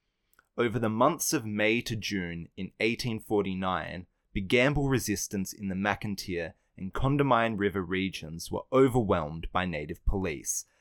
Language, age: English, 20-39